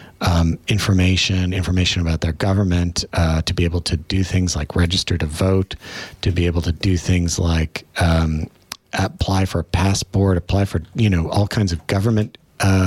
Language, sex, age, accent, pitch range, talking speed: English, male, 40-59, American, 85-105 Hz, 175 wpm